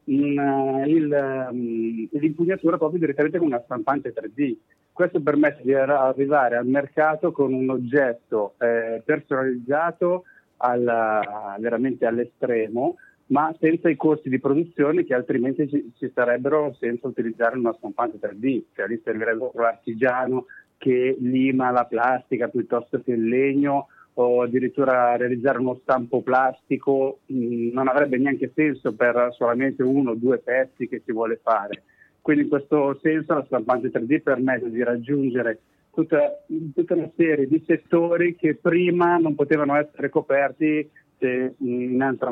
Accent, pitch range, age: native, 125-150 Hz, 40-59